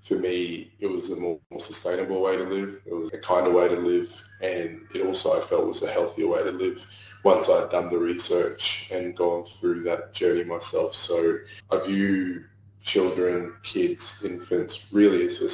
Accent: Australian